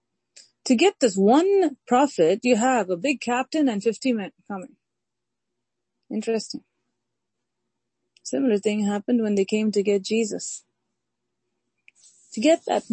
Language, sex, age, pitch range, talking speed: English, female, 30-49, 180-225 Hz, 125 wpm